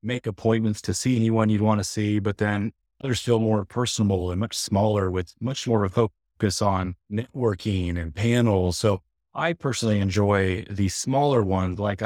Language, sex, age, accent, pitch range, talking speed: English, male, 30-49, American, 95-115 Hz, 180 wpm